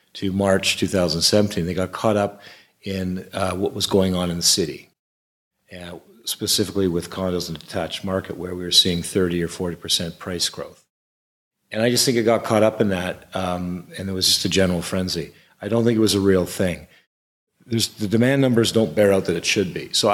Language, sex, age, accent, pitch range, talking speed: English, male, 40-59, American, 90-105 Hz, 210 wpm